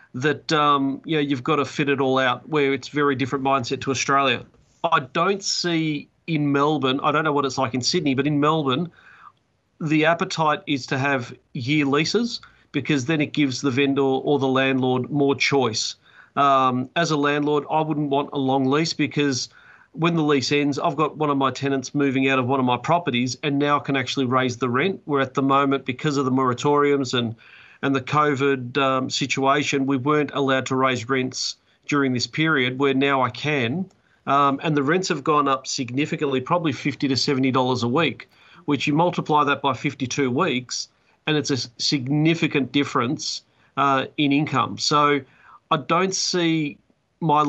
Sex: male